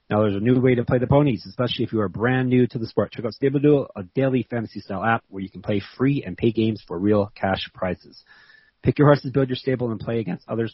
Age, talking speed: 30-49, 270 wpm